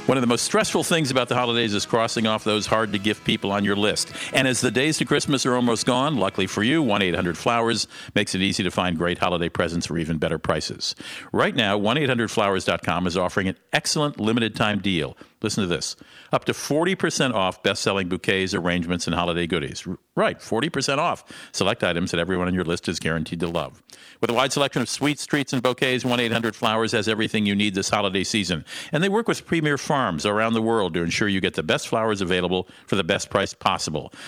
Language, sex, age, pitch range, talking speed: English, male, 50-69, 95-125 Hz, 205 wpm